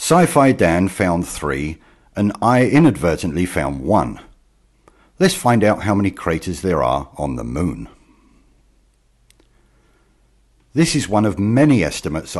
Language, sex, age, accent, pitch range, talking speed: English, male, 60-79, British, 85-130 Hz, 125 wpm